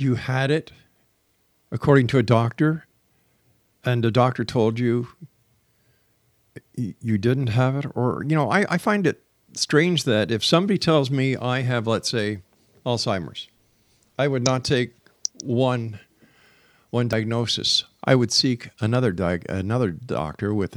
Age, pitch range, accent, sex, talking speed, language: 50-69, 105-130 Hz, American, male, 140 wpm, English